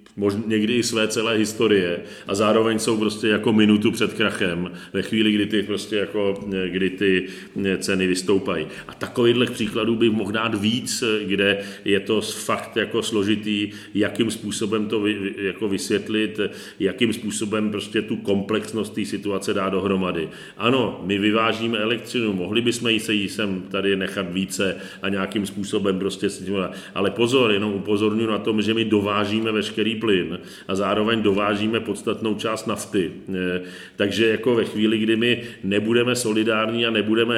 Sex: male